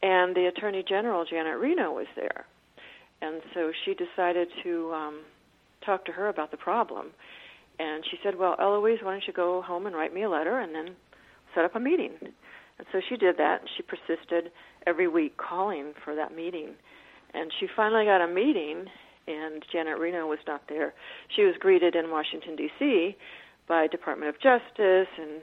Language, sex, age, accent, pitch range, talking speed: English, female, 50-69, American, 165-235 Hz, 185 wpm